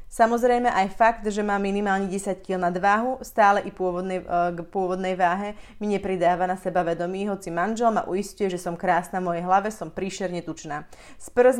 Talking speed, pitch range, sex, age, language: 180 wpm, 180-210 Hz, female, 30-49, Slovak